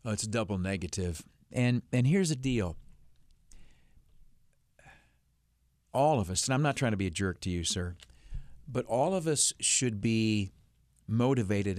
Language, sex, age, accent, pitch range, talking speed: English, male, 50-69, American, 95-120 Hz, 160 wpm